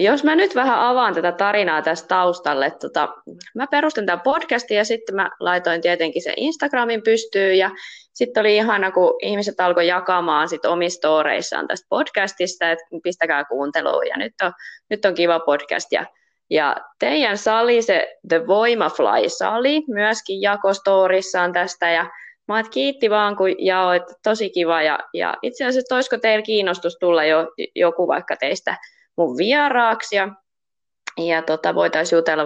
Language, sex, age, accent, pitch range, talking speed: Finnish, female, 20-39, native, 175-250 Hz, 150 wpm